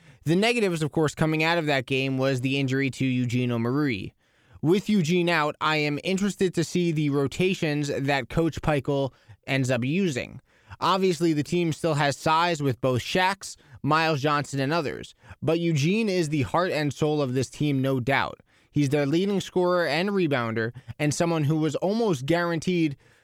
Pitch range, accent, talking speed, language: 135-170 Hz, American, 175 wpm, English